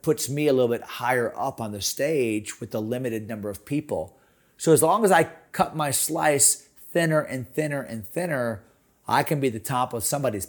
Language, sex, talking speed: English, male, 205 wpm